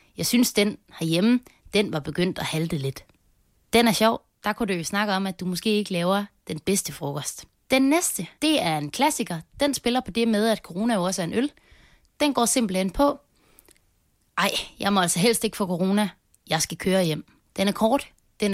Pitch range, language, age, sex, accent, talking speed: 165-230 Hz, Danish, 30-49, female, native, 210 wpm